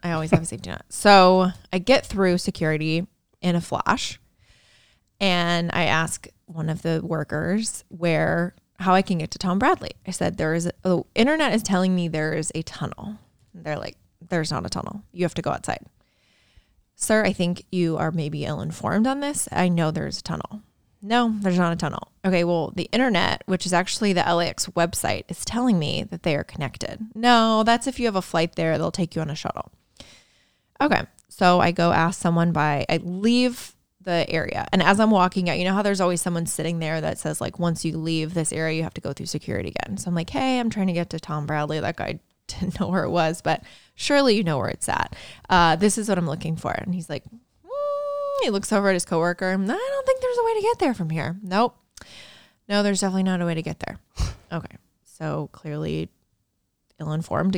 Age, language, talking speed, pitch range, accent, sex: 20-39, English, 220 wpm, 160-200 Hz, American, female